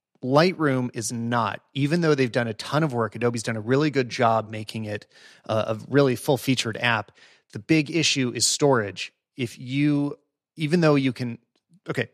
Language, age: English, 30-49